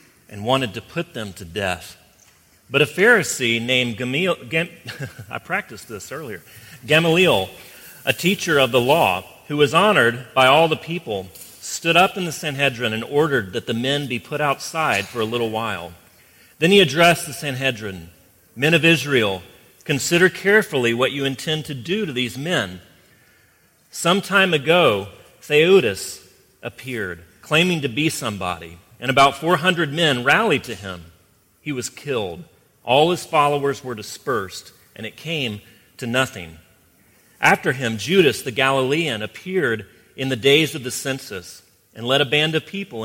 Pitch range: 100-150 Hz